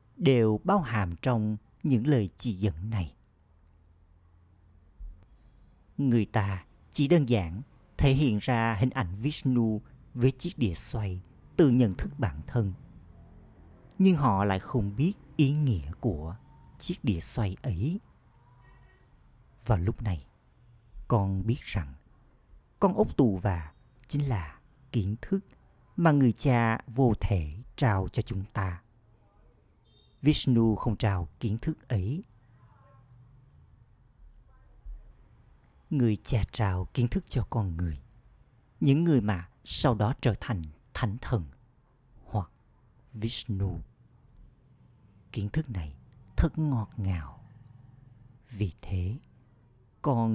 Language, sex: Vietnamese, male